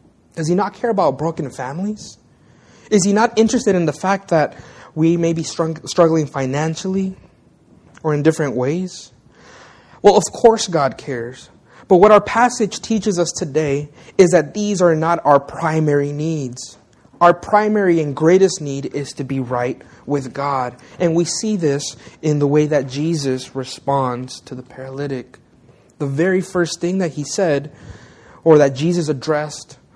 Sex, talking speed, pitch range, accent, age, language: male, 160 wpm, 135-180 Hz, American, 30-49, English